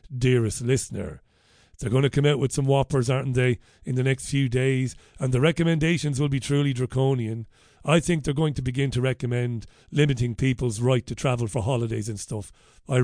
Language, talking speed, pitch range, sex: English, 195 wpm, 125-155 Hz, male